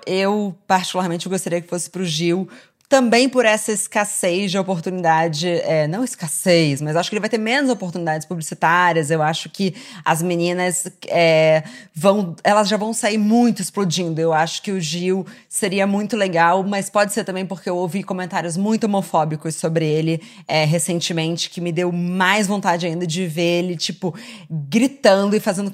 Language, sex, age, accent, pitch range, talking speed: Portuguese, female, 20-39, Brazilian, 170-205 Hz, 175 wpm